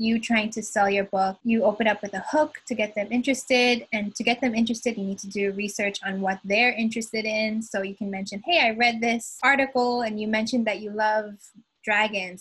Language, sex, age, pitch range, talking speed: English, female, 10-29, 210-250 Hz, 225 wpm